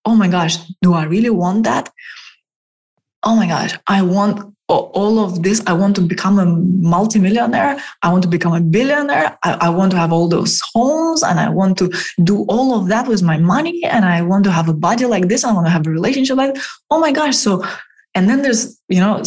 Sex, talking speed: female, 225 wpm